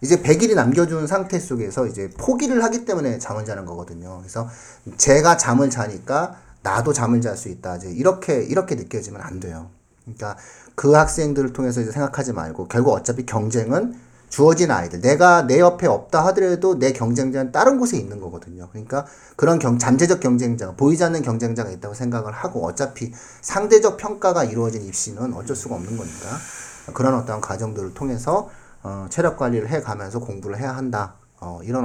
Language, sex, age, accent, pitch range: Korean, male, 40-59, native, 105-150 Hz